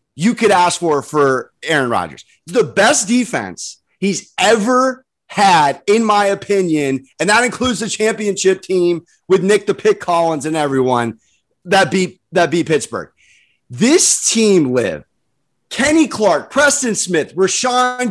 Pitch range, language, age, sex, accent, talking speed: 170-225 Hz, English, 30-49, male, American, 140 wpm